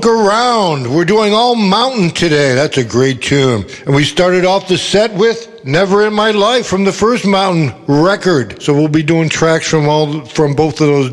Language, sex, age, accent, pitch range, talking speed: English, male, 60-79, American, 135-175 Hz, 200 wpm